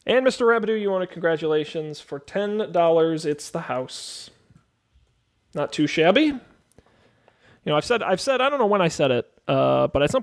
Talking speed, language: 190 wpm, English